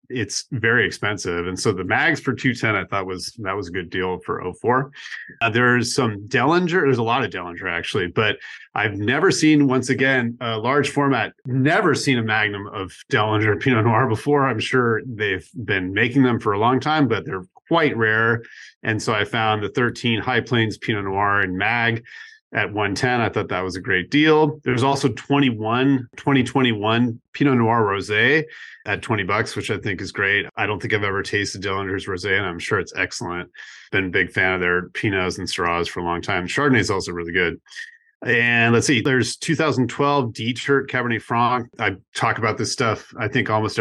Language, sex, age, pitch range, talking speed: English, male, 30-49, 105-135 Hz, 195 wpm